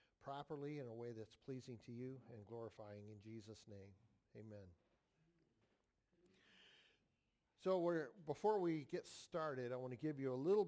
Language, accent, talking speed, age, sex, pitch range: English, American, 150 wpm, 50-69, male, 125-160 Hz